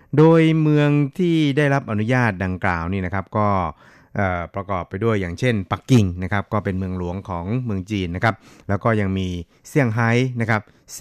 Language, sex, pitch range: Thai, male, 95-115 Hz